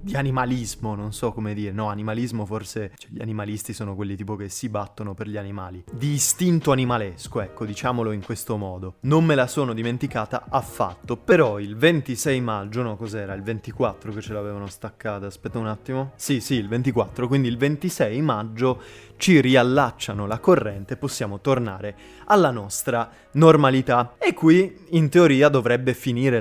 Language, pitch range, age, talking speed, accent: Italian, 110-140 Hz, 20-39, 165 wpm, native